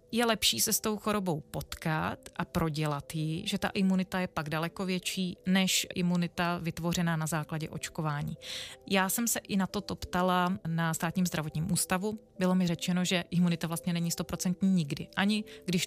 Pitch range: 165-190 Hz